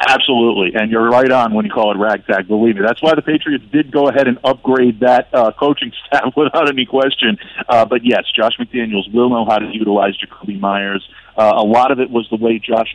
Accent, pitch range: American, 110-135 Hz